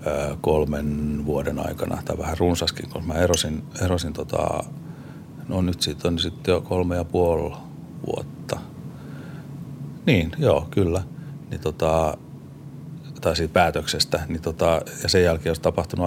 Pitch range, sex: 80-100 Hz, male